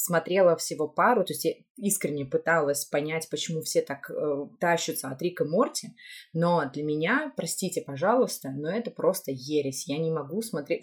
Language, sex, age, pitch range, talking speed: Russian, female, 20-39, 145-185 Hz, 170 wpm